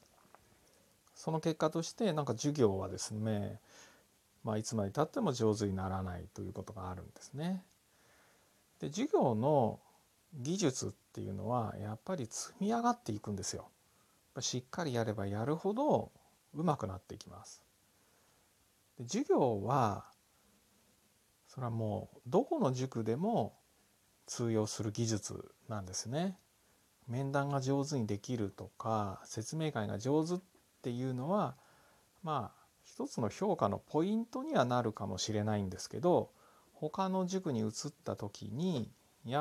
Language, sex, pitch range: Japanese, male, 105-150 Hz